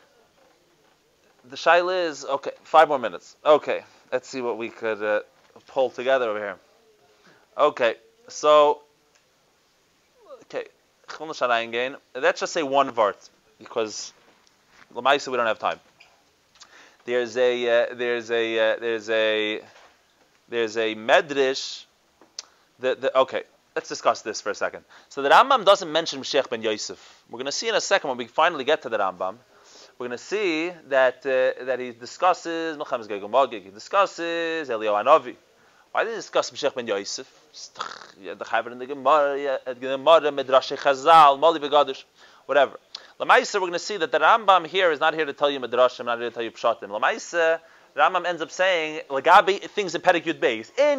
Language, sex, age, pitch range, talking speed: English, male, 20-39, 125-180 Hz, 150 wpm